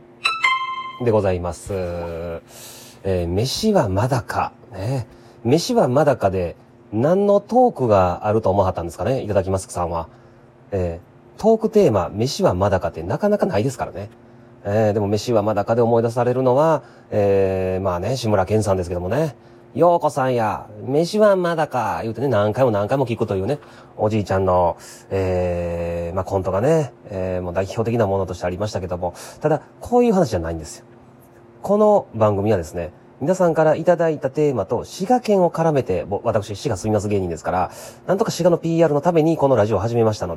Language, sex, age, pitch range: Japanese, male, 30-49, 95-150 Hz